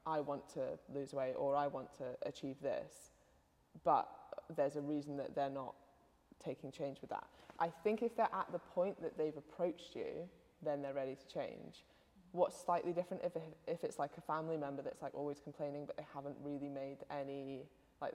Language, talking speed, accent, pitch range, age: English, 190 wpm, British, 140-160 Hz, 20-39